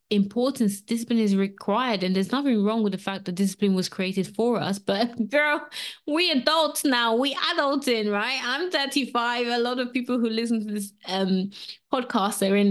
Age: 20-39